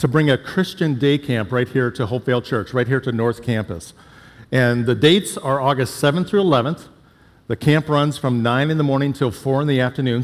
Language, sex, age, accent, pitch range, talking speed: English, male, 50-69, American, 125-160 Hz, 215 wpm